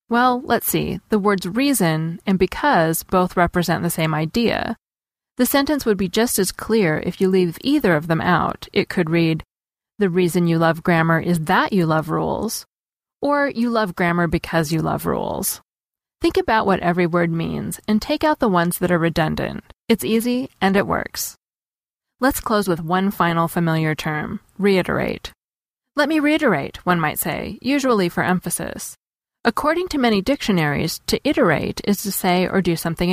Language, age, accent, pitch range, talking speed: English, 30-49, American, 170-225 Hz, 175 wpm